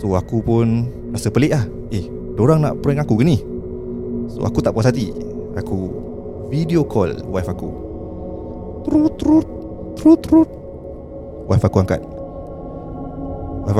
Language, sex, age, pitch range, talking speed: Malay, male, 20-39, 90-125 Hz, 135 wpm